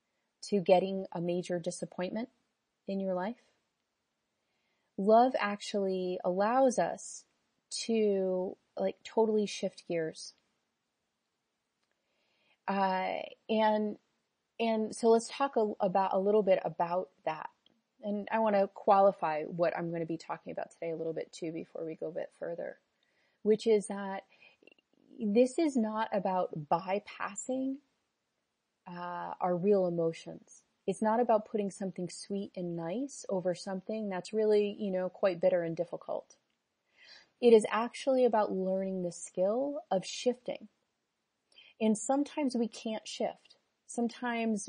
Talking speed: 130 wpm